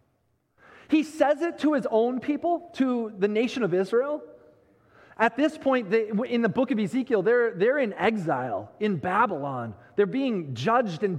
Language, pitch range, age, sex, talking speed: English, 205-295 Hz, 30-49, male, 160 wpm